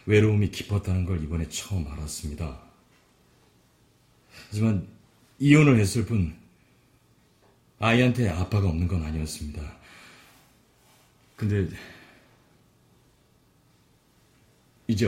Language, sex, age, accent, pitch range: Korean, male, 40-59, native, 90-130 Hz